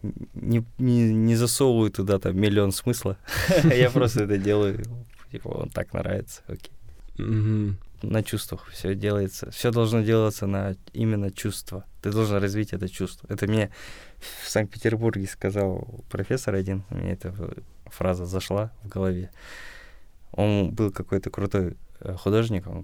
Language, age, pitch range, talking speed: Russian, 20-39, 95-115 Hz, 130 wpm